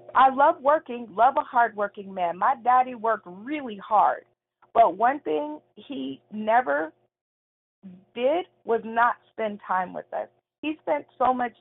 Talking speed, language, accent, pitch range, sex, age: 145 wpm, English, American, 225-285 Hz, female, 40-59